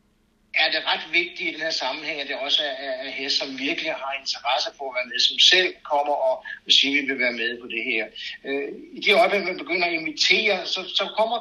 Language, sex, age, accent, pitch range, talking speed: Danish, male, 60-79, native, 140-225 Hz, 225 wpm